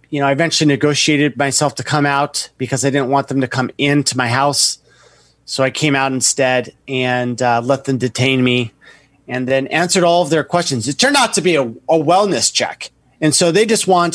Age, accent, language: 30-49, American, English